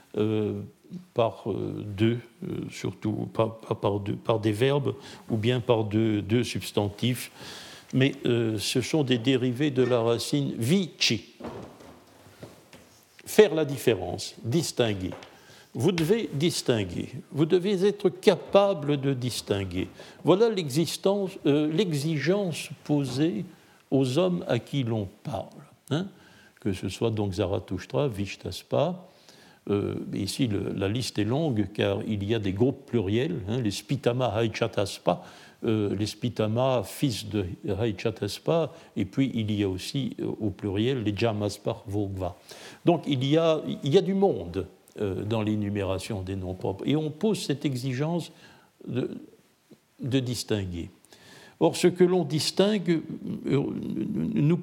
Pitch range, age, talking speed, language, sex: 105-155 Hz, 60-79, 135 wpm, French, male